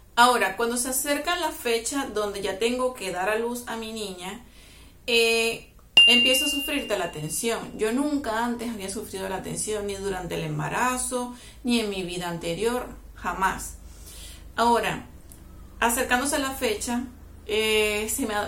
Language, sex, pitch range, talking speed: English, female, 190-245 Hz, 145 wpm